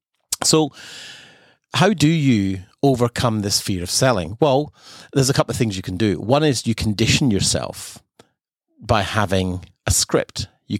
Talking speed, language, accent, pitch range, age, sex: 155 wpm, English, British, 100-130 Hz, 40-59, male